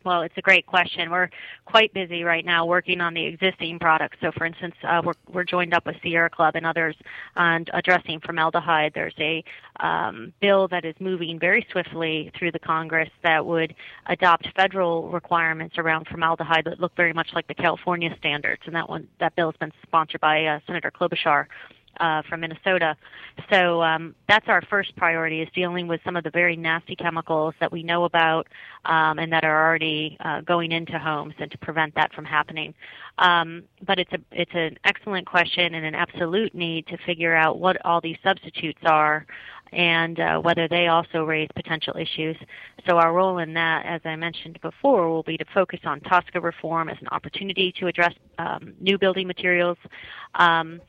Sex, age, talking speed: female, 30-49, 190 wpm